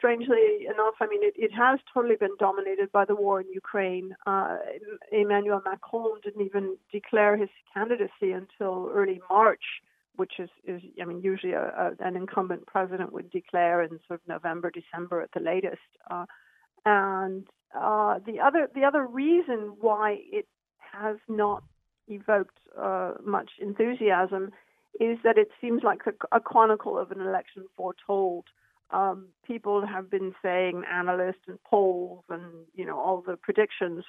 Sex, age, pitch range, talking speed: female, 50-69, 185-215 Hz, 155 wpm